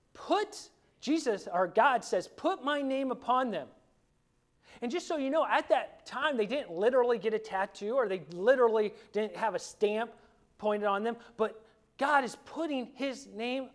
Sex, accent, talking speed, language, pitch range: male, American, 175 wpm, English, 165-270 Hz